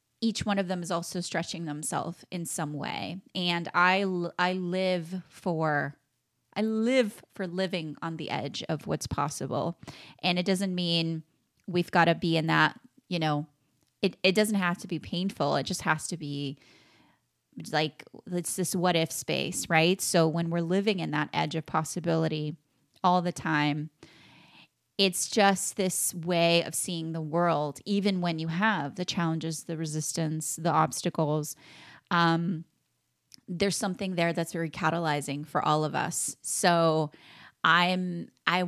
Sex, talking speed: female, 155 wpm